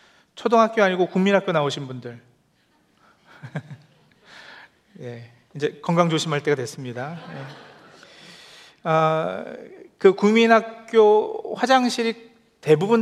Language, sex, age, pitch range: Korean, male, 40-59, 145-215 Hz